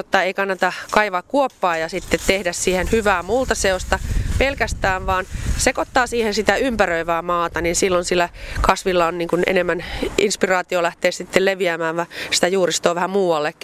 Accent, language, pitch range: native, Finnish, 165-200 Hz